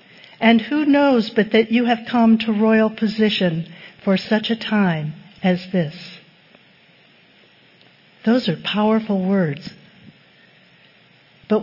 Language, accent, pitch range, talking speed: English, American, 185-230 Hz, 115 wpm